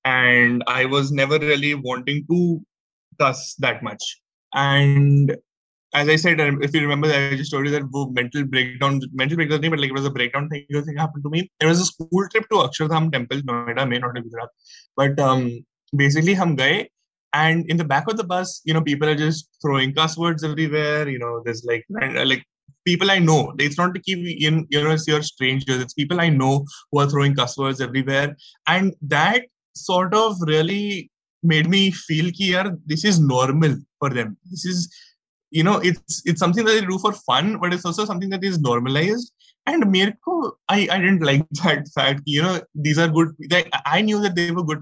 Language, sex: English, male